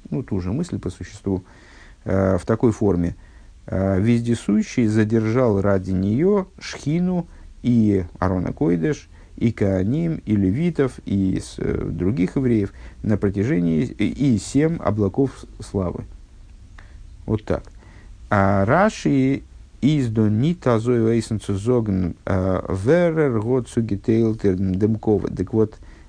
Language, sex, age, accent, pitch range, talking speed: Russian, male, 50-69, native, 95-115 Hz, 105 wpm